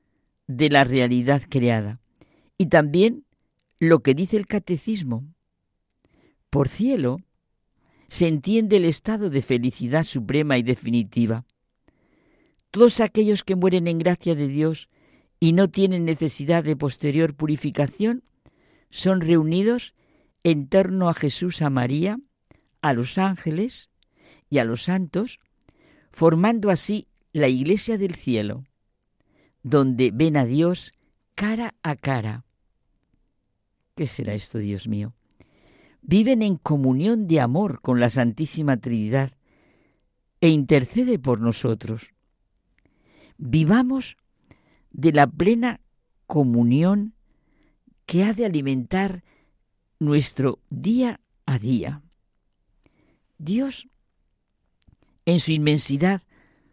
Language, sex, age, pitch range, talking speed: Spanish, female, 50-69, 130-195 Hz, 105 wpm